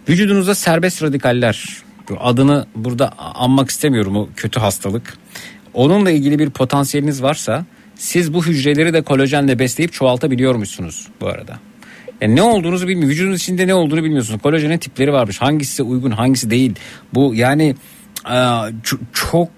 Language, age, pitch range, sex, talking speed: Turkish, 50-69, 120-170 Hz, male, 130 wpm